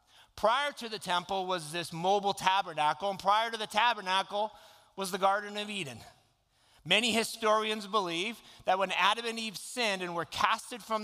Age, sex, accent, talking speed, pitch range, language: 30-49, male, American, 170 wpm, 165-220 Hz, English